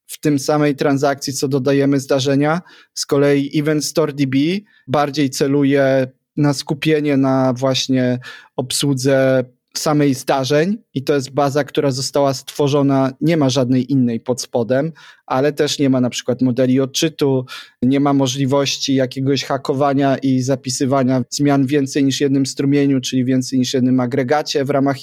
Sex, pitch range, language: male, 135-150 Hz, Polish